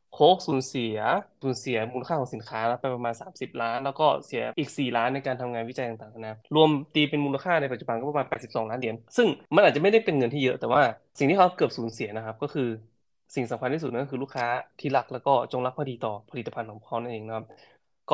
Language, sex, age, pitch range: Thai, male, 20-39, 115-145 Hz